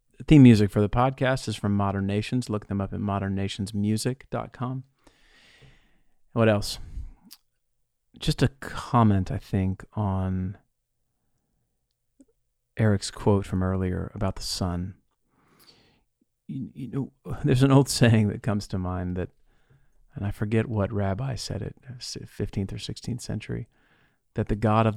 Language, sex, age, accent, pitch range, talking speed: English, male, 40-59, American, 95-120 Hz, 135 wpm